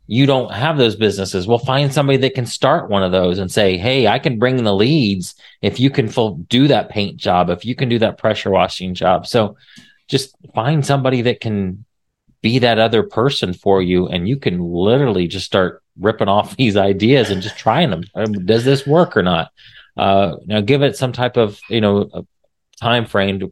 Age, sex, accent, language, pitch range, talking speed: 30-49, male, American, English, 95-125 Hz, 205 wpm